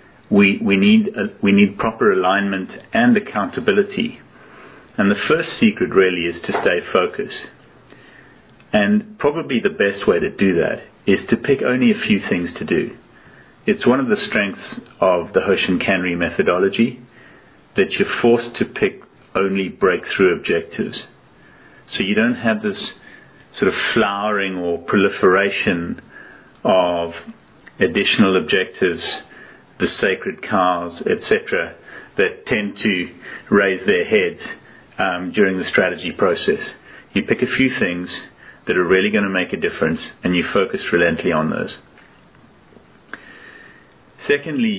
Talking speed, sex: 135 wpm, male